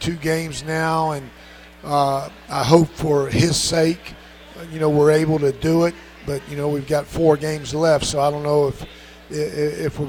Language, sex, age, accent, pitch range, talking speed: English, male, 50-69, American, 135-155 Hz, 190 wpm